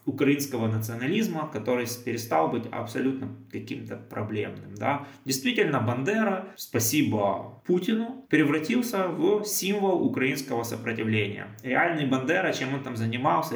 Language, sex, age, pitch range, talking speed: Russian, male, 20-39, 115-150 Hz, 100 wpm